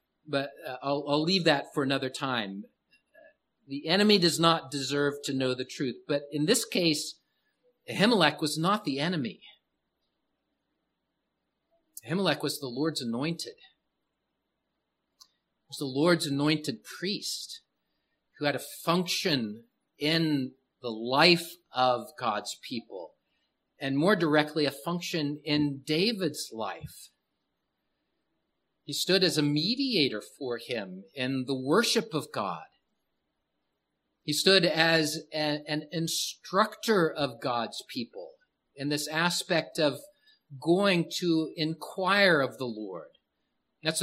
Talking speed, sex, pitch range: 120 wpm, male, 145-185 Hz